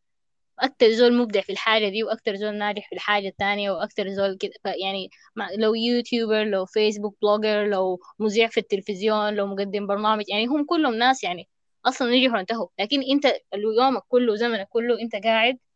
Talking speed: 170 wpm